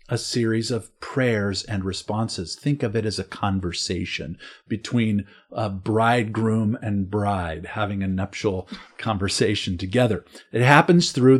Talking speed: 130 wpm